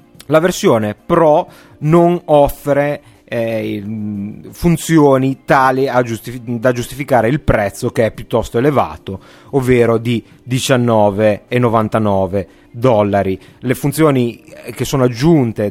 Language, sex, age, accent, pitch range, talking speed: Italian, male, 30-49, native, 105-140 Hz, 100 wpm